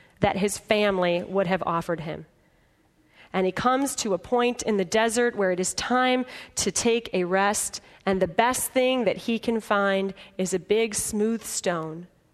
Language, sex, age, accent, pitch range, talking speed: English, female, 30-49, American, 185-230 Hz, 180 wpm